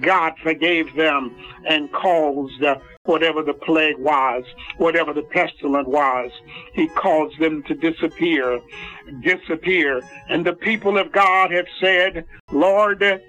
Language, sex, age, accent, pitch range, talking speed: English, male, 60-79, American, 150-200 Hz, 120 wpm